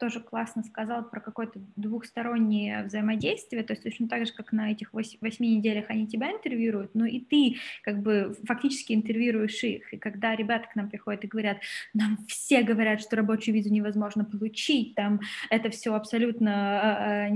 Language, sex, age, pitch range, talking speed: Russian, female, 20-39, 215-250 Hz, 170 wpm